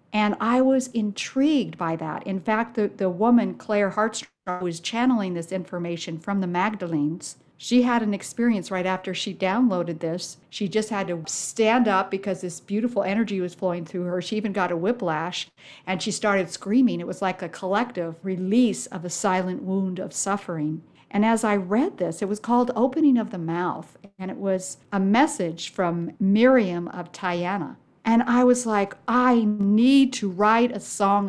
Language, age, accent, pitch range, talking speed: English, 50-69, American, 180-220 Hz, 180 wpm